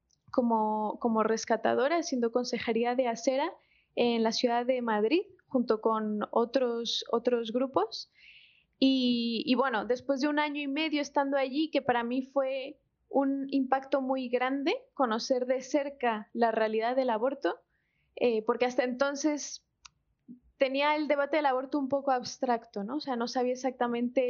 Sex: female